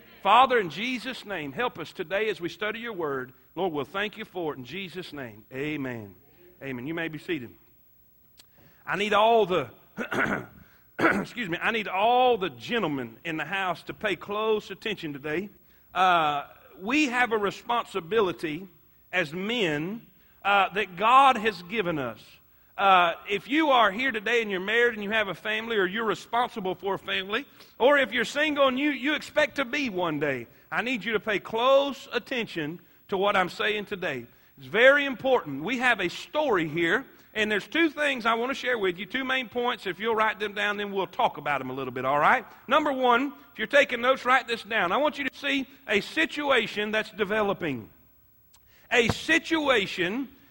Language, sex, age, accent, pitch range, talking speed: English, male, 50-69, American, 175-250 Hz, 190 wpm